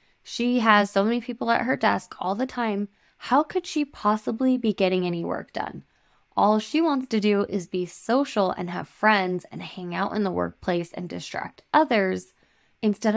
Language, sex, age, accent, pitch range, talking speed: English, female, 10-29, American, 190-245 Hz, 185 wpm